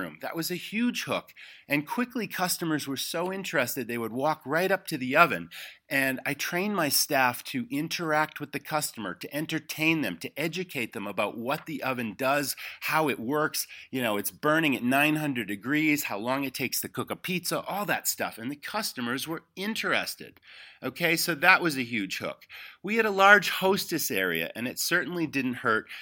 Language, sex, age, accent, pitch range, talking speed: English, male, 40-59, American, 125-175 Hz, 195 wpm